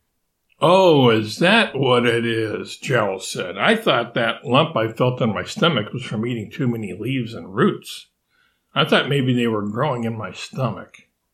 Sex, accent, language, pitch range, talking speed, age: male, American, English, 110-130 Hz, 180 wpm, 60-79